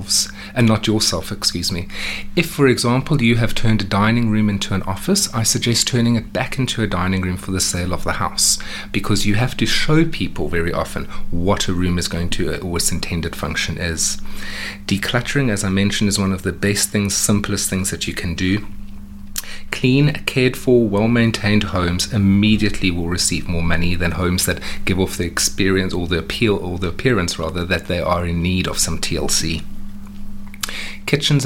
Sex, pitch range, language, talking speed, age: male, 95-110 Hz, English, 190 wpm, 30-49